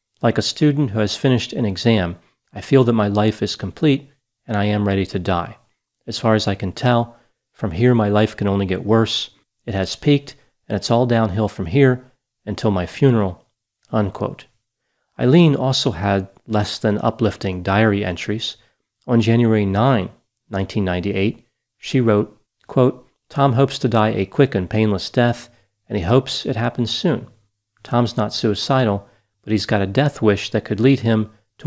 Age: 40-59